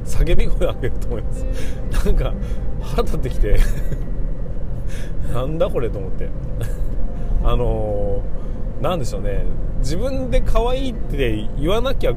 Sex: male